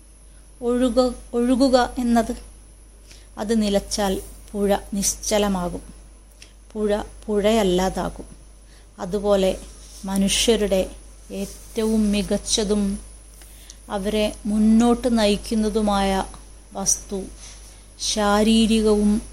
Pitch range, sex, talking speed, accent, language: 195-220 Hz, female, 55 wpm, native, Malayalam